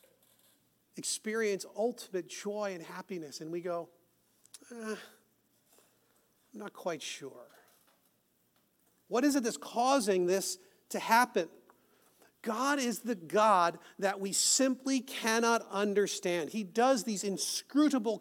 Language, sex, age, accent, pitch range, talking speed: English, male, 40-59, American, 200-265 Hz, 110 wpm